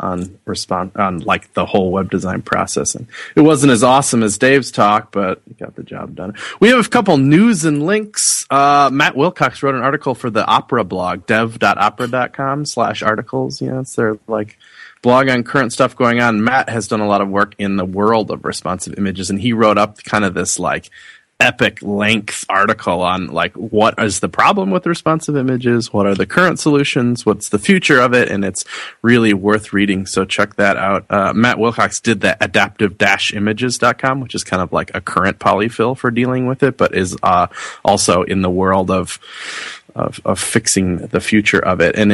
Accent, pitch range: American, 100-130 Hz